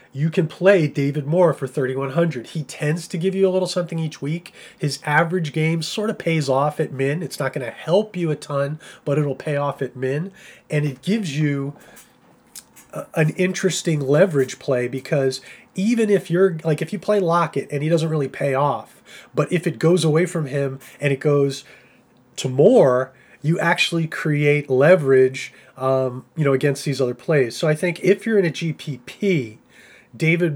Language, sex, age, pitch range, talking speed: English, male, 30-49, 130-160 Hz, 190 wpm